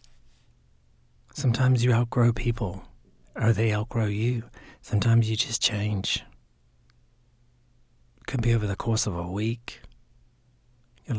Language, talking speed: English, 120 wpm